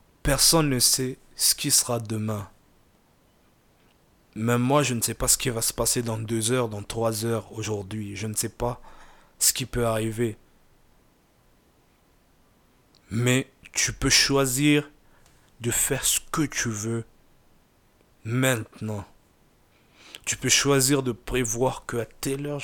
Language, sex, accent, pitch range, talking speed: French, male, French, 110-130 Hz, 140 wpm